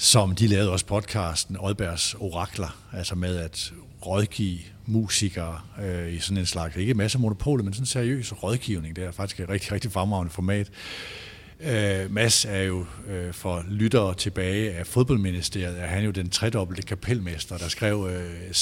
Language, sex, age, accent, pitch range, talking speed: Danish, male, 60-79, native, 95-115 Hz, 170 wpm